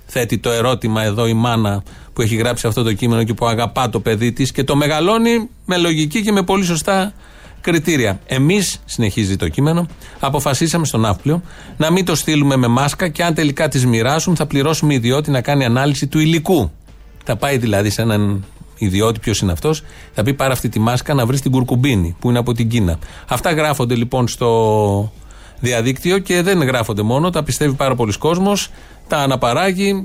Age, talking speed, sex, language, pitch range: 40-59, 185 wpm, male, Greek, 110-155 Hz